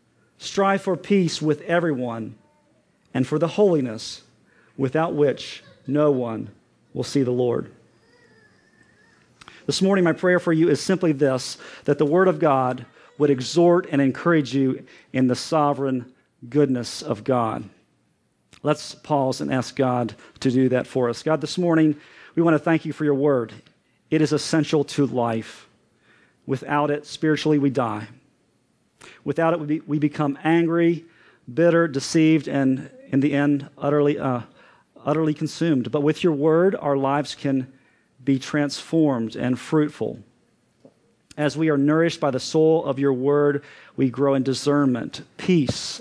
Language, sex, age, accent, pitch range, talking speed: English, male, 40-59, American, 130-155 Hz, 150 wpm